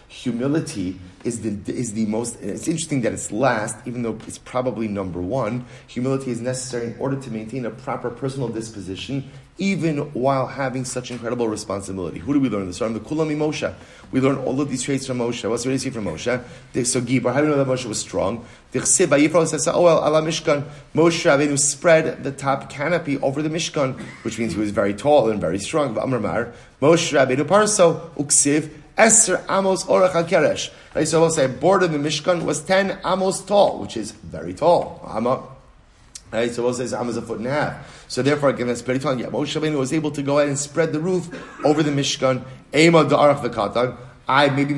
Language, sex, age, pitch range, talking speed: English, male, 30-49, 120-155 Hz, 195 wpm